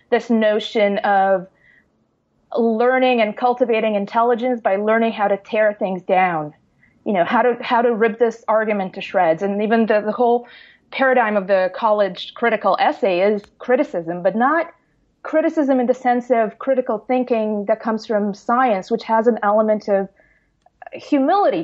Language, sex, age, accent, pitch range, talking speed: English, female, 30-49, American, 200-255 Hz, 160 wpm